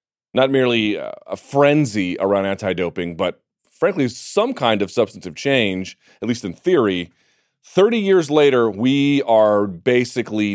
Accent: American